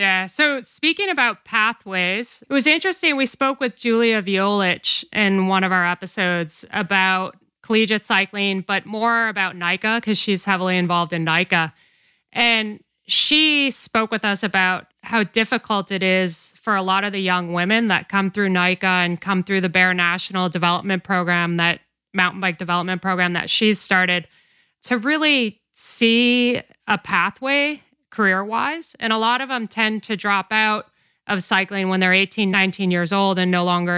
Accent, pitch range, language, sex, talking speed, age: American, 185-230 Hz, English, female, 165 wpm, 20-39